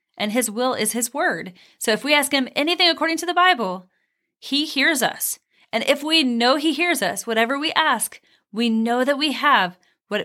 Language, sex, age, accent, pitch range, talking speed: English, female, 30-49, American, 225-285 Hz, 205 wpm